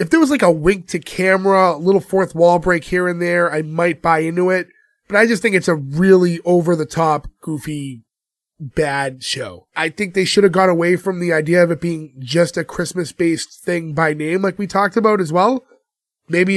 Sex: male